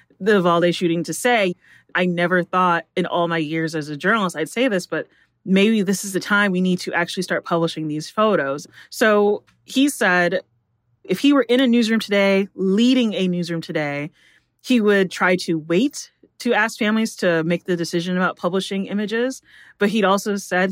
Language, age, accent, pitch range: English, 30-49, American, 170-205 Hz